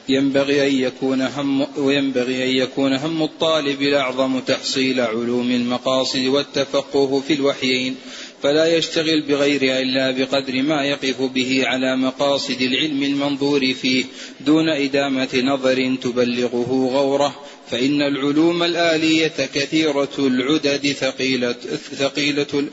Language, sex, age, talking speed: Arabic, male, 30-49, 105 wpm